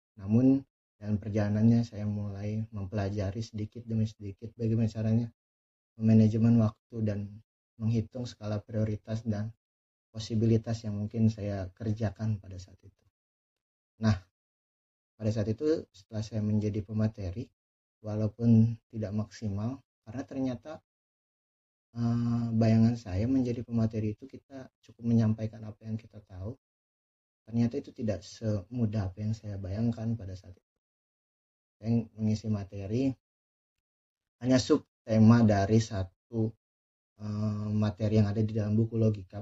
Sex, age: male, 30-49